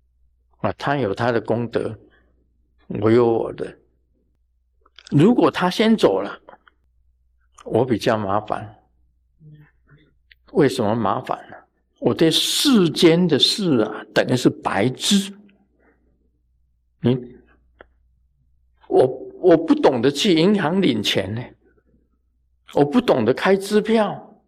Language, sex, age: Chinese, male, 50-69